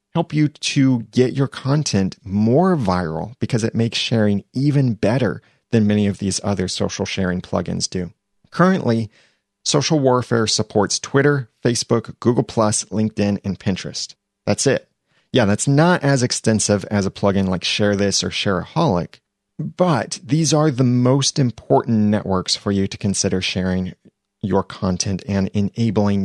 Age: 30-49